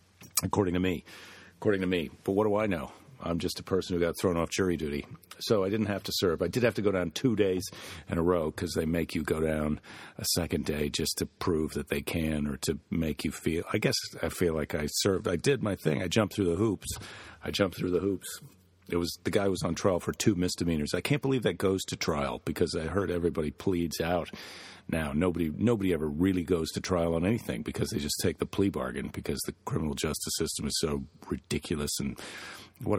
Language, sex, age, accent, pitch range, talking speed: English, male, 40-59, American, 80-95 Hz, 235 wpm